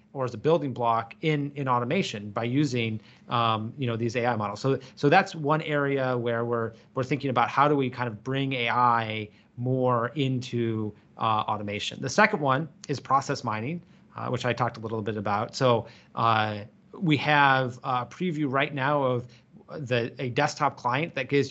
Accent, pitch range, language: American, 120-150 Hz, English